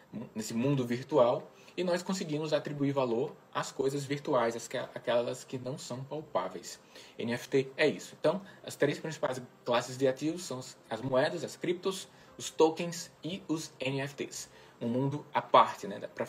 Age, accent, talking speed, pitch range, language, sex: 20-39, Brazilian, 160 wpm, 130-160 Hz, Portuguese, male